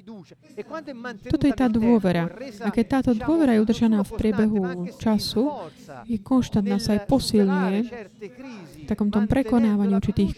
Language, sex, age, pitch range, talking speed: Slovak, female, 20-39, 195-235 Hz, 135 wpm